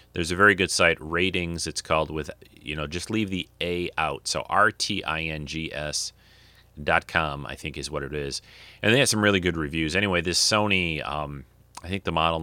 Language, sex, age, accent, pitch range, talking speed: English, male, 30-49, American, 70-90 Hz, 200 wpm